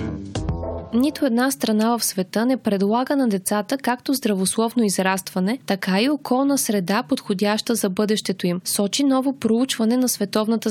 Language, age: Bulgarian, 20-39